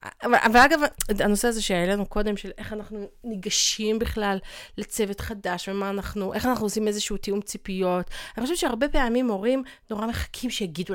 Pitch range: 180-235 Hz